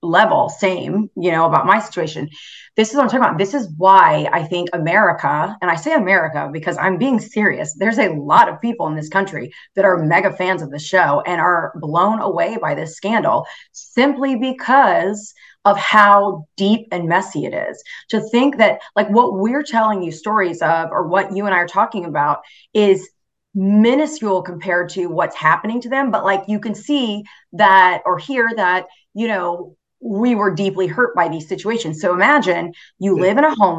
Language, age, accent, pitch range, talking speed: English, 30-49, American, 175-220 Hz, 195 wpm